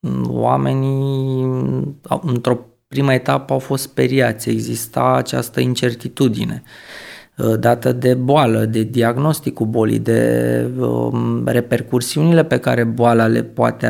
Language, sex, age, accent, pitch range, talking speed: Romanian, male, 20-39, native, 115-140 Hz, 100 wpm